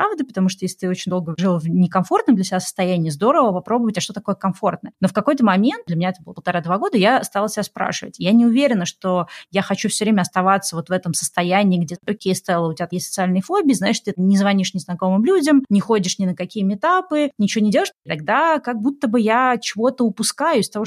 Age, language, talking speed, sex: 20-39, Russian, 225 wpm, female